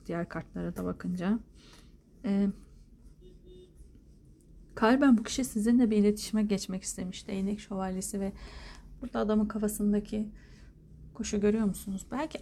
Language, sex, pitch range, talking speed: Turkish, female, 165-220 Hz, 110 wpm